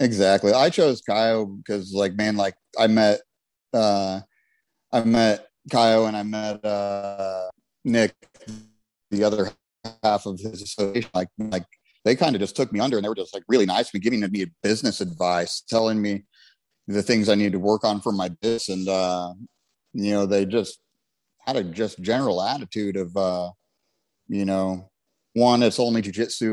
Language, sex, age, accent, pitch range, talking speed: English, male, 30-49, American, 100-115 Hz, 175 wpm